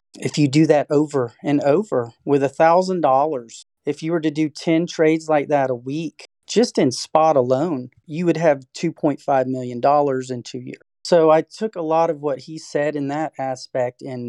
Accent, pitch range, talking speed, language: American, 130-160 Hz, 190 wpm, English